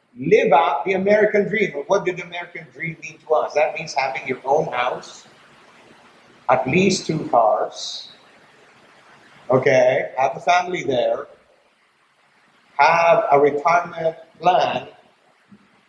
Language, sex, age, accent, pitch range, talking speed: English, male, 50-69, American, 145-200 Hz, 120 wpm